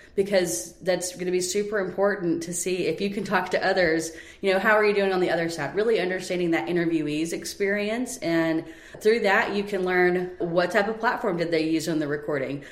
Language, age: English, 30-49